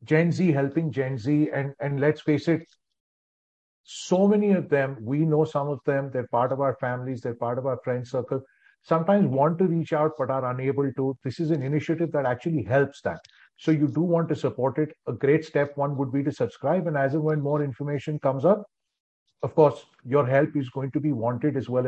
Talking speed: 220 wpm